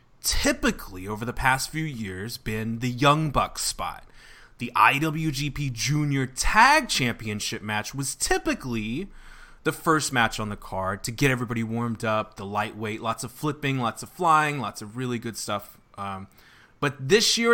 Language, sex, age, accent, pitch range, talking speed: English, male, 20-39, American, 110-145 Hz, 160 wpm